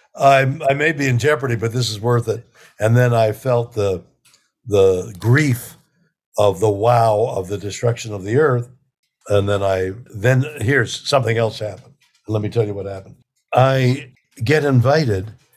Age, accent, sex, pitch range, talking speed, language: 60-79, American, male, 105-130 Hz, 165 wpm, English